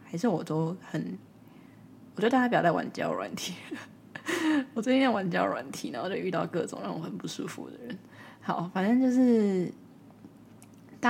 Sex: female